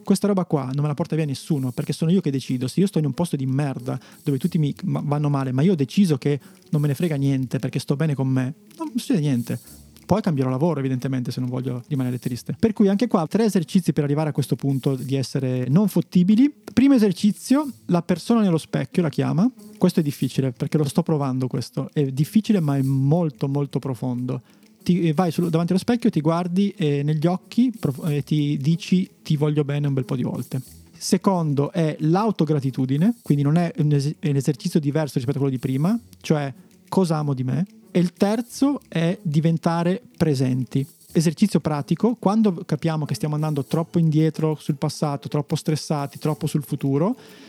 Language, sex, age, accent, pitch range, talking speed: Italian, male, 30-49, native, 145-185 Hz, 200 wpm